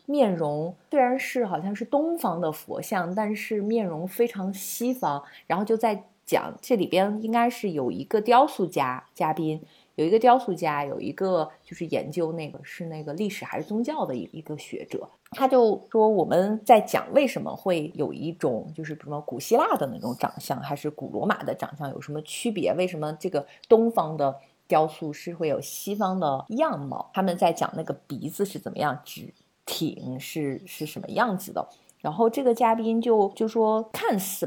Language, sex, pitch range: Chinese, female, 160-235 Hz